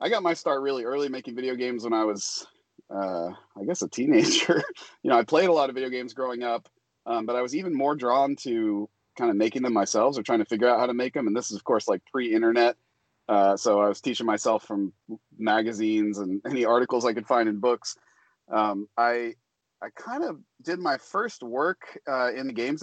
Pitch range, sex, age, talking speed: 110-135 Hz, male, 30-49, 230 wpm